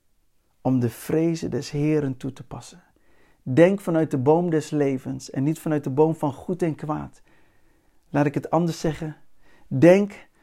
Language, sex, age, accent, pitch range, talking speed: Dutch, male, 50-69, Dutch, 140-165 Hz, 165 wpm